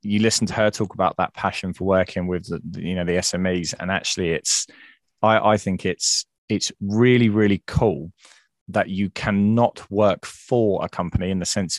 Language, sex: English, male